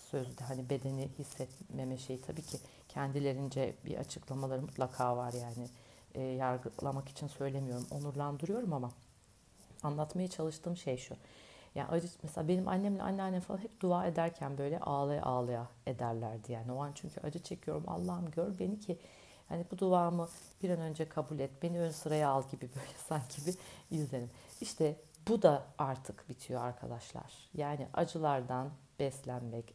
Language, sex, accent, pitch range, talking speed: Turkish, female, native, 130-175 Hz, 150 wpm